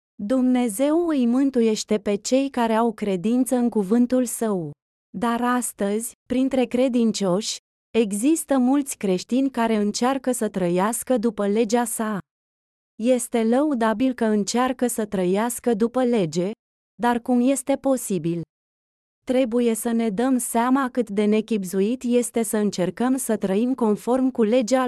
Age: 20-39